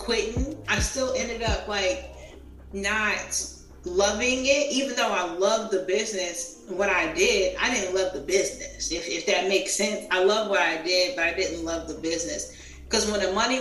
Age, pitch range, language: 30-49, 180-240 Hz, English